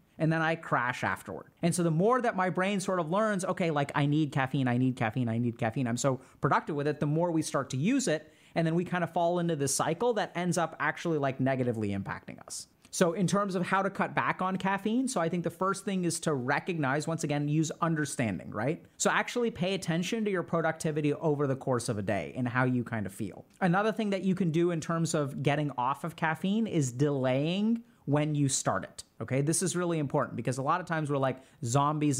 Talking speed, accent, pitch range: 240 wpm, American, 135-175 Hz